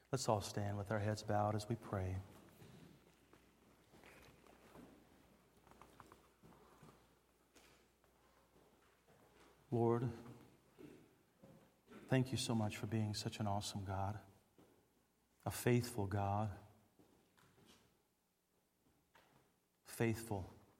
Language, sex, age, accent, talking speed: English, male, 50-69, American, 70 wpm